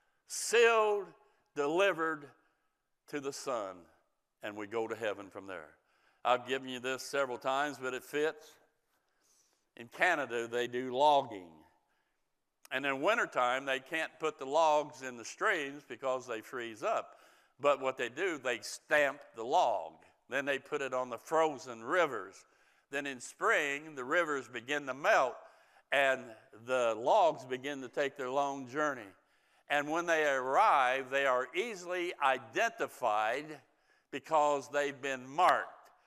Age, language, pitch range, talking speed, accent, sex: 60-79, English, 130-160 Hz, 145 wpm, American, male